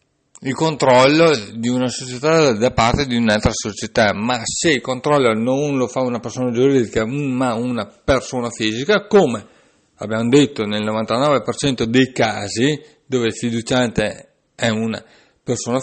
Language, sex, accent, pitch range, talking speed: Italian, male, native, 110-140 Hz, 140 wpm